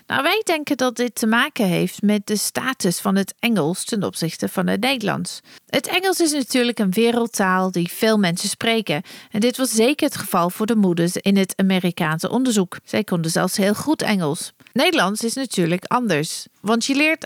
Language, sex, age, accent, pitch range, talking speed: Dutch, female, 40-59, Dutch, 180-240 Hz, 190 wpm